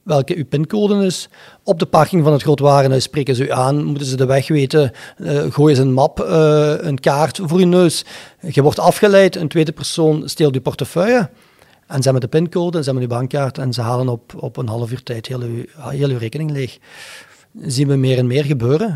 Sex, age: male, 40-59